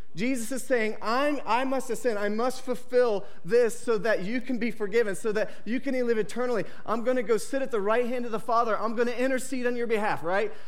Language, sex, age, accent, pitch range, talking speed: English, male, 30-49, American, 195-245 Hz, 235 wpm